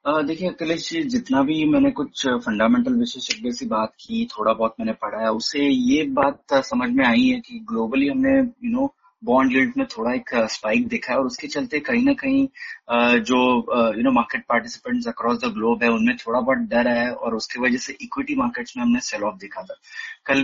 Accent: native